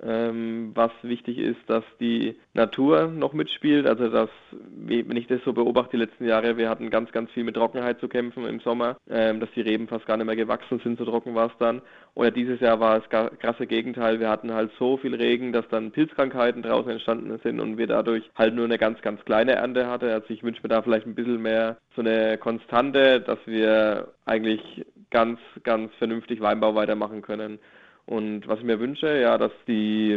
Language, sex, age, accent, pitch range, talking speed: German, male, 20-39, German, 110-120 Hz, 205 wpm